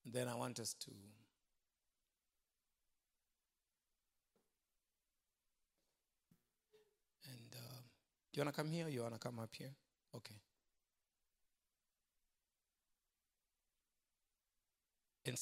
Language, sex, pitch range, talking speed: English, male, 120-185 Hz, 80 wpm